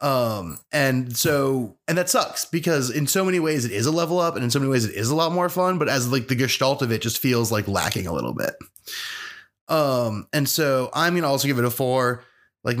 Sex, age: male, 20-39